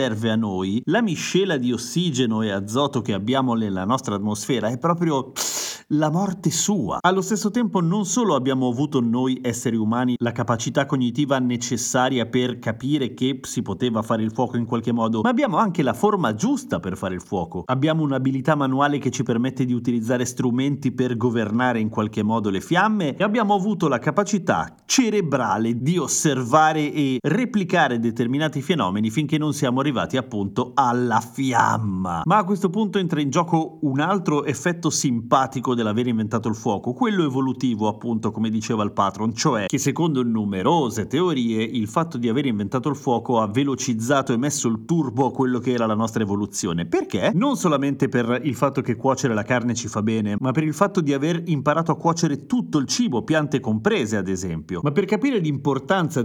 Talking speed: 180 wpm